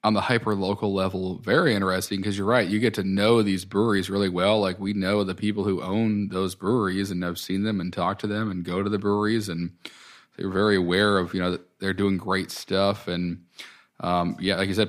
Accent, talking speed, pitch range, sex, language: American, 230 wpm, 90-100 Hz, male, English